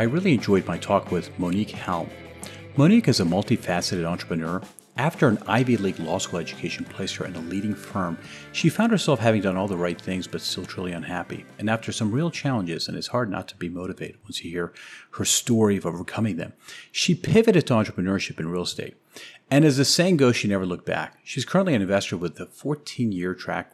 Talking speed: 210 wpm